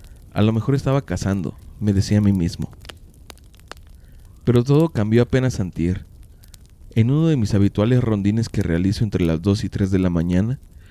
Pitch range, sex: 95-120 Hz, male